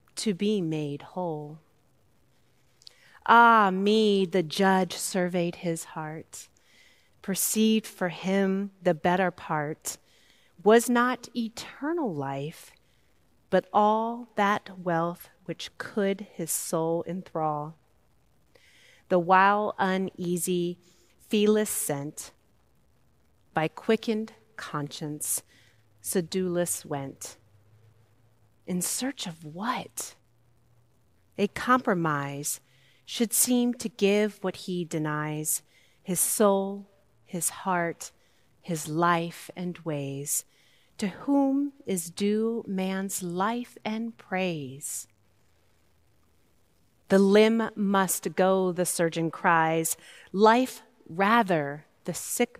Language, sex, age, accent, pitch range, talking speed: English, female, 40-59, American, 150-205 Hz, 90 wpm